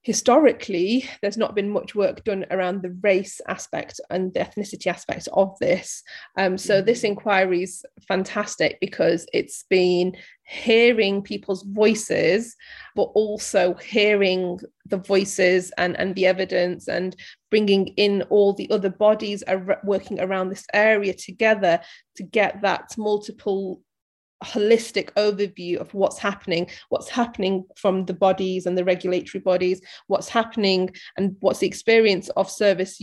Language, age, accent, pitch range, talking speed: English, 30-49, British, 185-210 Hz, 140 wpm